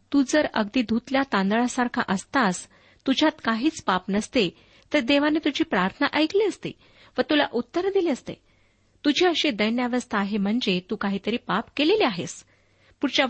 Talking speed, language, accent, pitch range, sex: 140 wpm, Marathi, native, 205-270 Hz, female